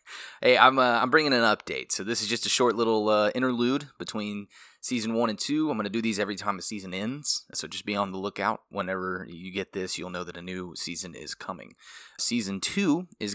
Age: 20-39